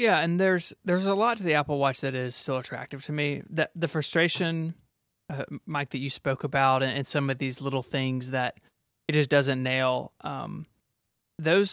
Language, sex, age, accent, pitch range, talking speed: English, male, 20-39, American, 135-160 Hz, 205 wpm